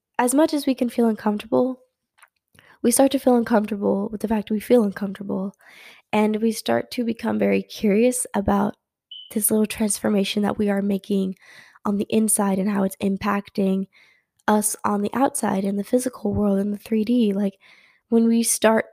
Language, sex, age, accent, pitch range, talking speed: English, female, 10-29, American, 200-230 Hz, 175 wpm